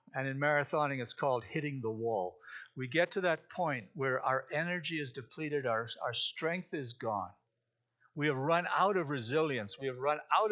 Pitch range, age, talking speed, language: 135-180 Hz, 60-79, 190 wpm, English